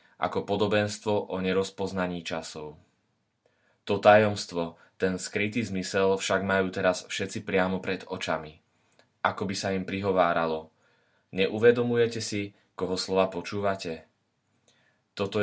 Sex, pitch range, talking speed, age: male, 90-105 Hz, 110 wpm, 20-39